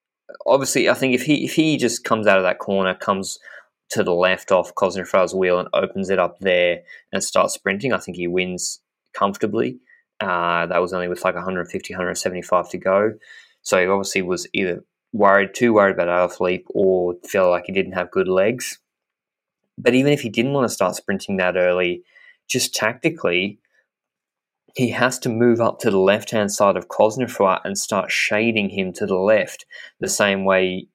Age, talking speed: 20-39, 190 wpm